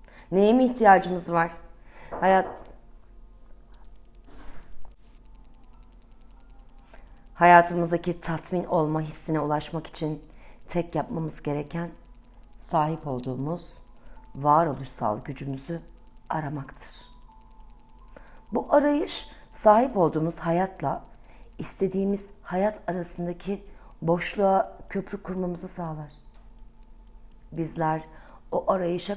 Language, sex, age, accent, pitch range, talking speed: Turkish, female, 40-59, native, 145-180 Hz, 70 wpm